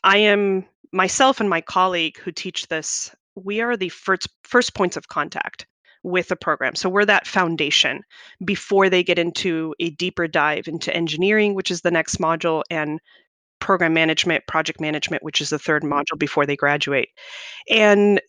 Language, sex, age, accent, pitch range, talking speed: English, female, 30-49, American, 165-210 Hz, 170 wpm